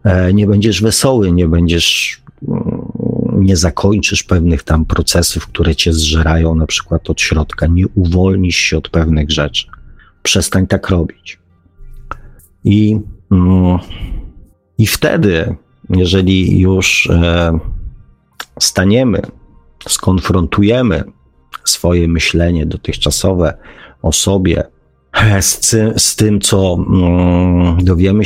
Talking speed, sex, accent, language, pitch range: 90 wpm, male, native, Polish, 85-100 Hz